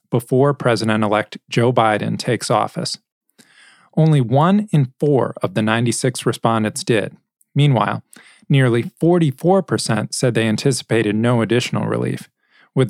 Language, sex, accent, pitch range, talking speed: English, male, American, 115-150 Hz, 115 wpm